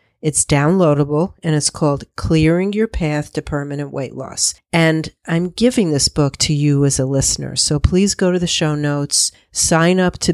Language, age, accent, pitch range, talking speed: English, 50-69, American, 140-175 Hz, 185 wpm